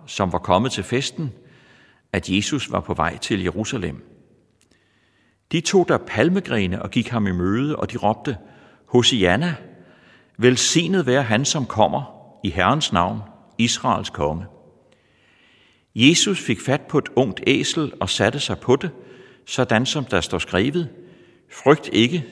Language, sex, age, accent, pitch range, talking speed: Danish, male, 60-79, native, 95-130 Hz, 145 wpm